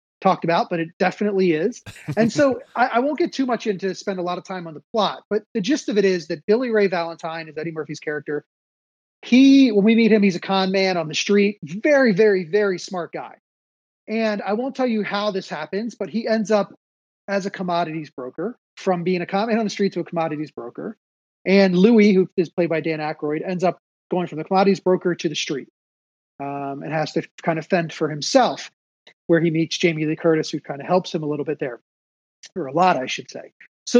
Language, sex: English, male